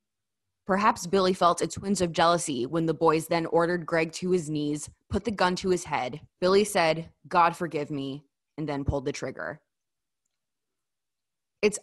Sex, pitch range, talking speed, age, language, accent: female, 160-210 Hz, 165 wpm, 20-39, English, American